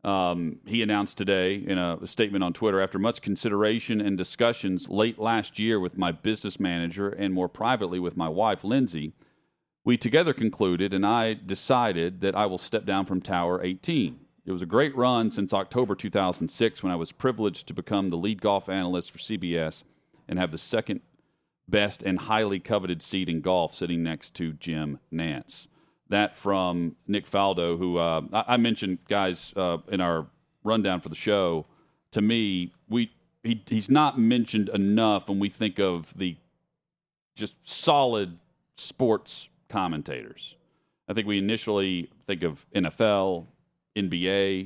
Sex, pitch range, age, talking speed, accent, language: male, 90-110 Hz, 40-59, 160 wpm, American, English